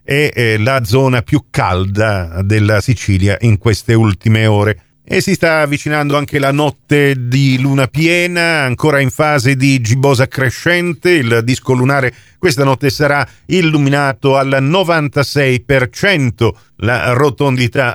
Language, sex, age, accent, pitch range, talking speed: Italian, male, 50-69, native, 115-150 Hz, 125 wpm